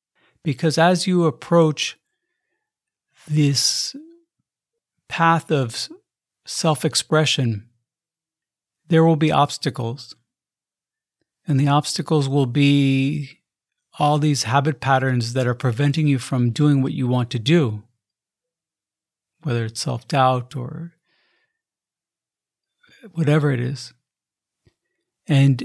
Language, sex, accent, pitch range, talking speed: English, male, American, 135-165 Hz, 95 wpm